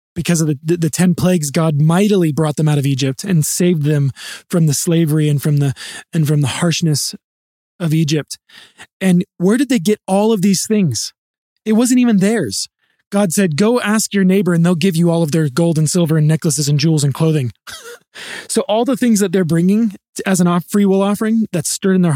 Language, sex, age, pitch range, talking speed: English, male, 20-39, 155-200 Hz, 215 wpm